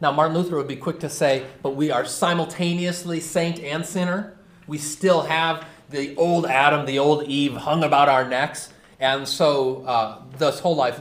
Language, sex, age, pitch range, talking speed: English, male, 30-49, 135-175 Hz, 185 wpm